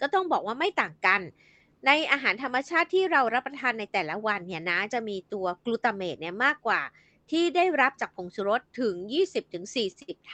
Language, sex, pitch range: Thai, female, 215-295 Hz